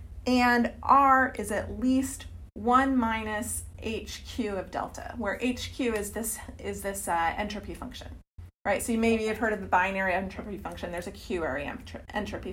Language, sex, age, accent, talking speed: English, female, 30-49, American, 170 wpm